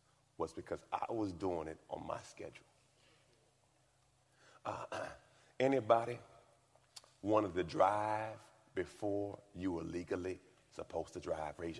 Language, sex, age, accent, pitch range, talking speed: English, male, 40-59, American, 105-145 Hz, 110 wpm